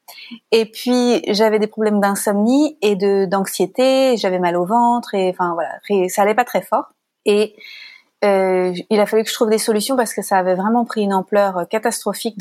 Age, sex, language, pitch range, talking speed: 30-49, female, French, 190-230 Hz, 195 wpm